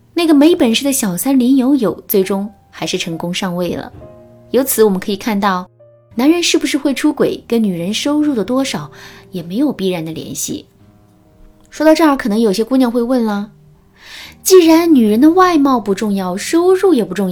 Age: 20-39